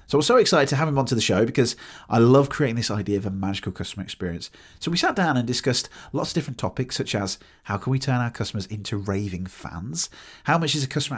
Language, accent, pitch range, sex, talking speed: English, British, 100-140 Hz, male, 260 wpm